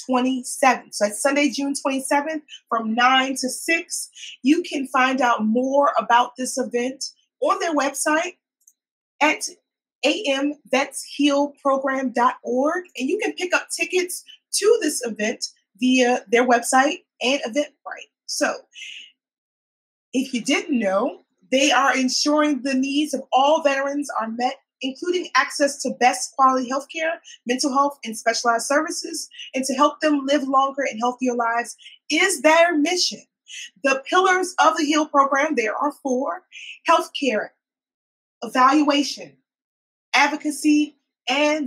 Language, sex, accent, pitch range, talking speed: English, female, American, 255-300 Hz, 130 wpm